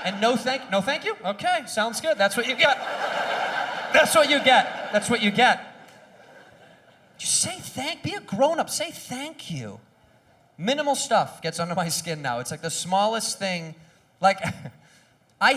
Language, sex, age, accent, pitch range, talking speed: English, male, 30-49, American, 170-275 Hz, 175 wpm